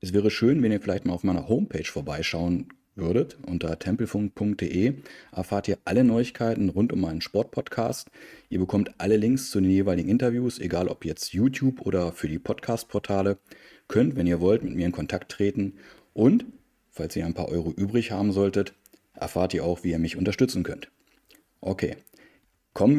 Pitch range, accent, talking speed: 90-110 Hz, German, 175 wpm